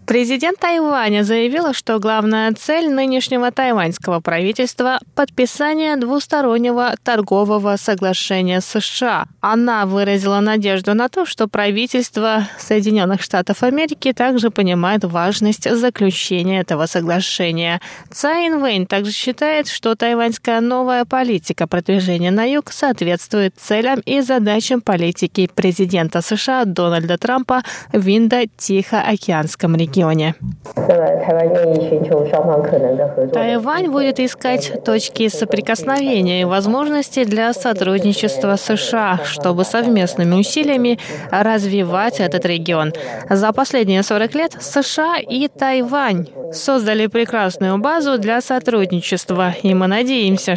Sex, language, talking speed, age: female, Russian, 100 wpm, 20-39